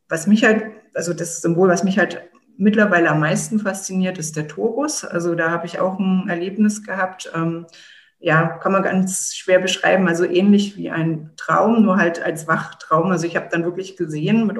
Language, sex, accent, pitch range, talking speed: German, female, German, 165-195 Hz, 190 wpm